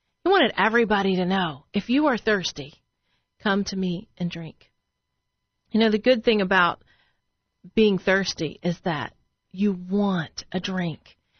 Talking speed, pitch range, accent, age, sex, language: 145 wpm, 175-215 Hz, American, 40-59, female, English